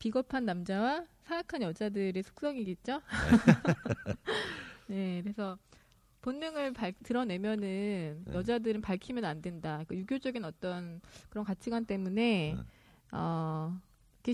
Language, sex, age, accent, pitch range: Korean, female, 20-39, native, 185-260 Hz